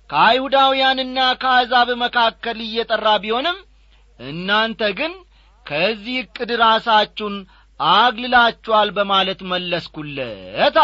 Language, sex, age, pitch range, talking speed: Amharic, male, 40-59, 150-220 Hz, 80 wpm